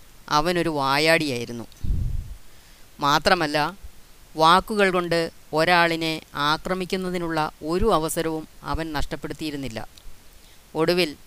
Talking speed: 65 wpm